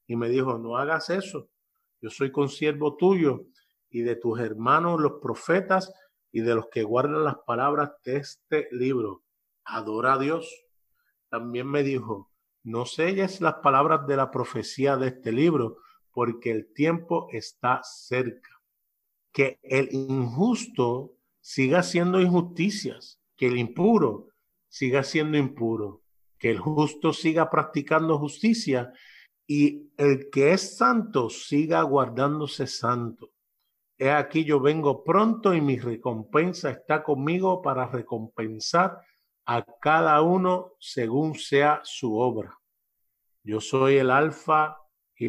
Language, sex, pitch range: Spanish, male, 120-160 Hz